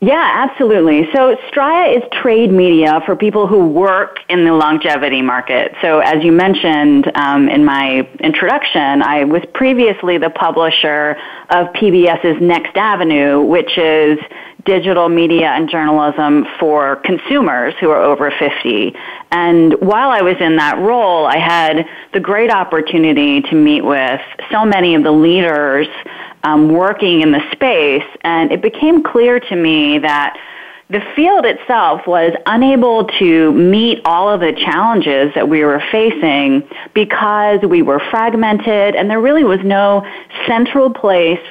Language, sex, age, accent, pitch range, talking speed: English, female, 30-49, American, 155-215 Hz, 145 wpm